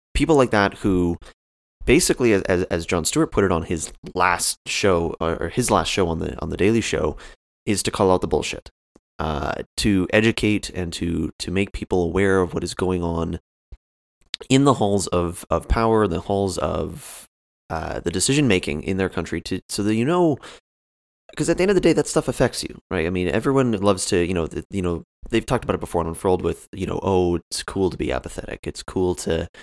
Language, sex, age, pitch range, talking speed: English, male, 30-49, 85-105 Hz, 215 wpm